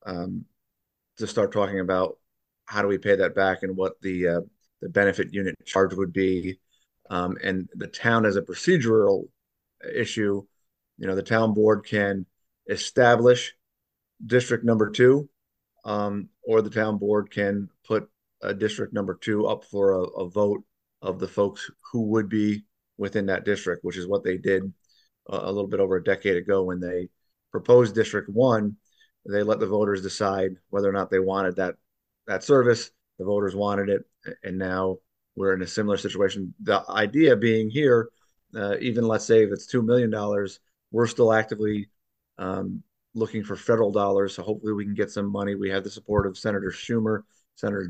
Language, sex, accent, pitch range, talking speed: English, male, American, 95-110 Hz, 175 wpm